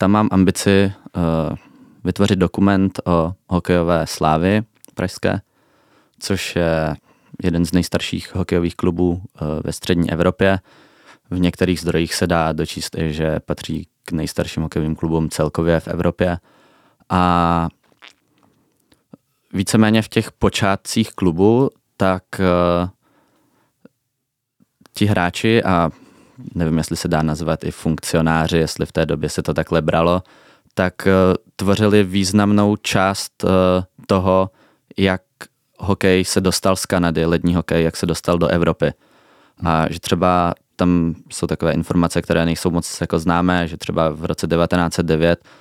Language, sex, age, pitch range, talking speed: Czech, male, 20-39, 80-95 Hz, 125 wpm